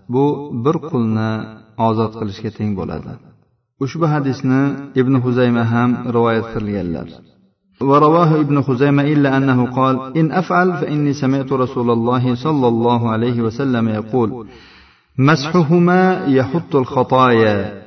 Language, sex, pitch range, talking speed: Russian, male, 115-145 Hz, 120 wpm